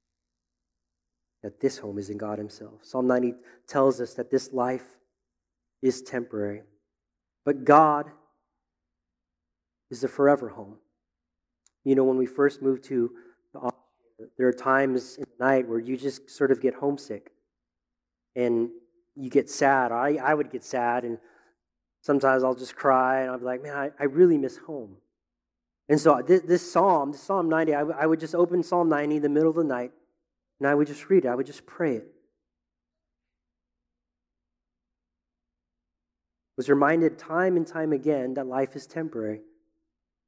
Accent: American